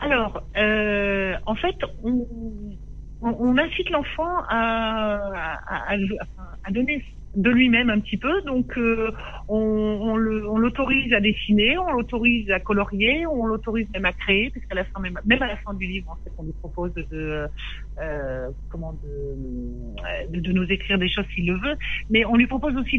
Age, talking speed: 60-79, 185 wpm